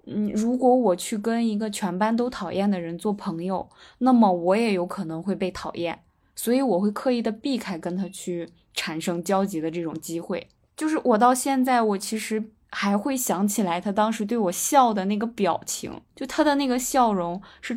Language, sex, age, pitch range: Chinese, female, 20-39, 185-245 Hz